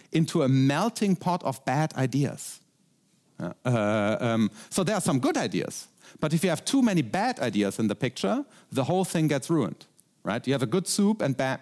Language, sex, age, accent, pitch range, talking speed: Dutch, male, 40-59, German, 125-180 Hz, 200 wpm